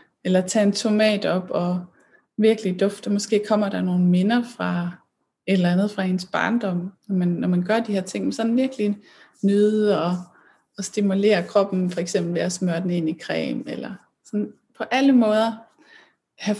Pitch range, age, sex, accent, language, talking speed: 180-215 Hz, 20-39, female, native, Danish, 185 wpm